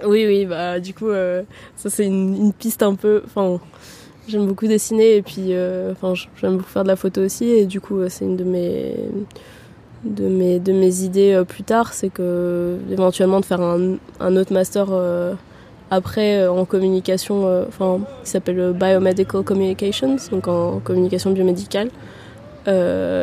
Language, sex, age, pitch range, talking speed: French, female, 20-39, 175-200 Hz, 180 wpm